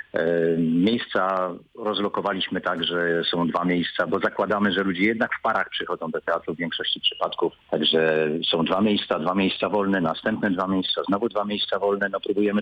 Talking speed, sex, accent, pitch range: 170 wpm, male, native, 95-115 Hz